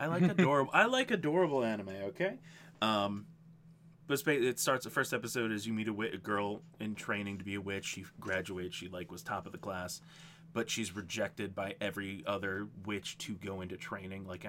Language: English